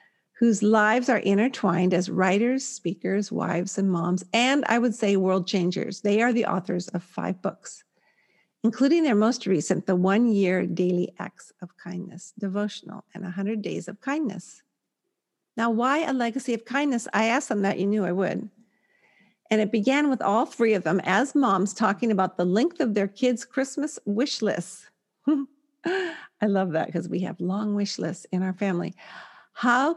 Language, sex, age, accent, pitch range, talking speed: English, female, 50-69, American, 190-265 Hz, 175 wpm